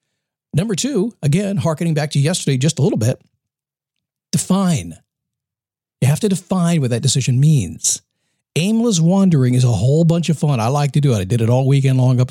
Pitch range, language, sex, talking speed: 130-170 Hz, English, male, 195 wpm